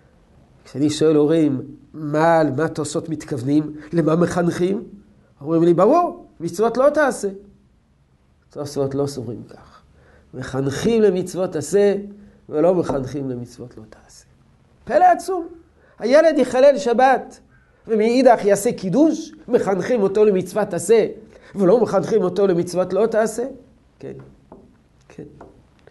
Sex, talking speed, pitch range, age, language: male, 110 wpm, 140-200 Hz, 50-69, Hebrew